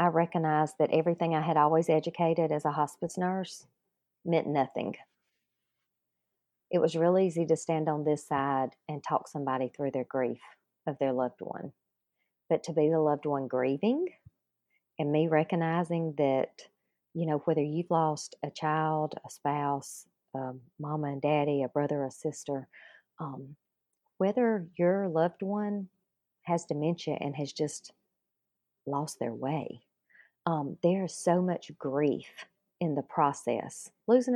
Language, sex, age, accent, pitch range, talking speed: English, female, 40-59, American, 145-180 Hz, 145 wpm